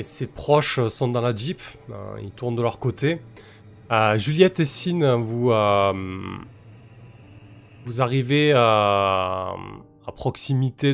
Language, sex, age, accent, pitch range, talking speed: French, male, 20-39, French, 100-130 Hz, 125 wpm